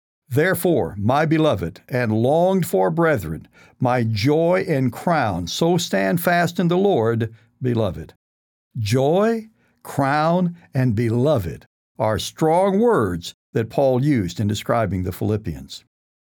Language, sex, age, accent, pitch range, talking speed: English, male, 60-79, American, 115-155 Hz, 115 wpm